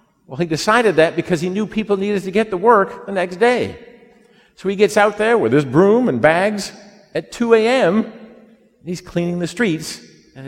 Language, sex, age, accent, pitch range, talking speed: English, male, 50-69, American, 140-215 Hz, 200 wpm